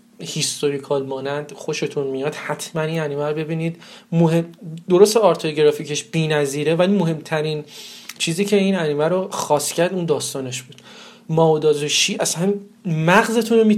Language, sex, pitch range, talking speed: Persian, male, 150-200 Hz, 125 wpm